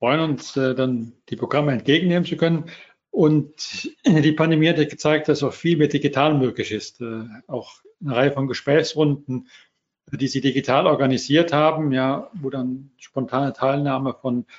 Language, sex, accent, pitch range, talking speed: German, male, German, 130-155 Hz, 160 wpm